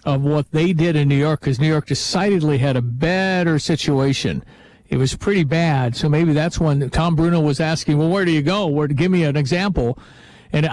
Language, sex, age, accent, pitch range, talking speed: English, male, 50-69, American, 150-180 Hz, 215 wpm